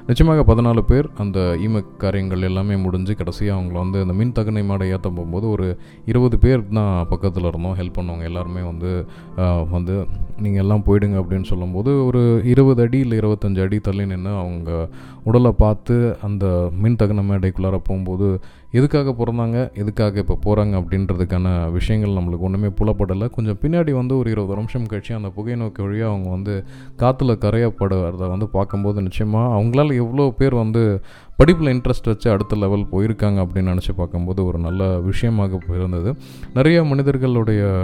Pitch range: 95-115 Hz